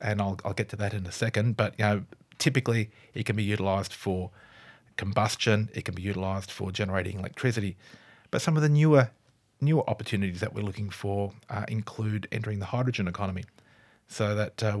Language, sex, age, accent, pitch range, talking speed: English, male, 30-49, Australian, 100-115 Hz, 185 wpm